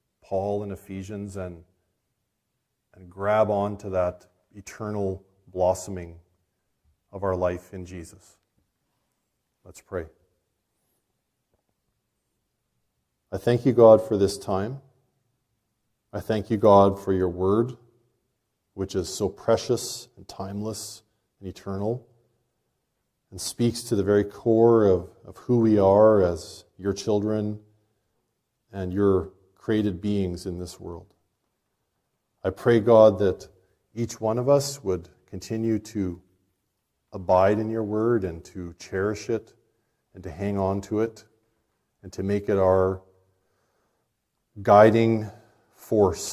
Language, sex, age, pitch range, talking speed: English, male, 40-59, 95-110 Hz, 120 wpm